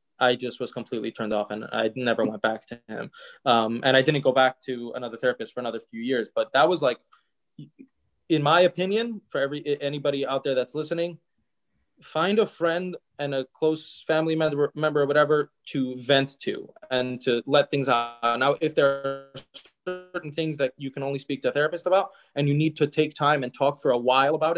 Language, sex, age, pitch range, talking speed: English, male, 20-39, 130-165 Hz, 210 wpm